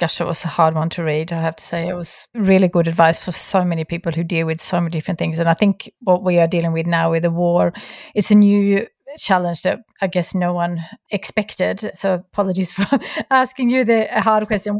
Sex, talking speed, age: female, 235 wpm, 30-49